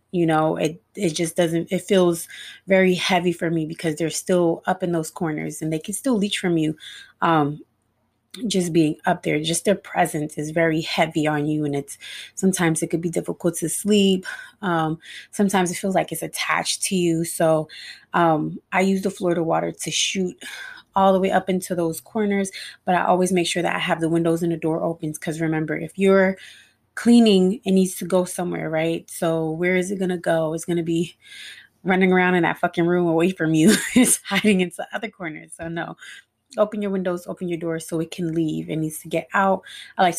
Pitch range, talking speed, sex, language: 165-190 Hz, 210 wpm, female, English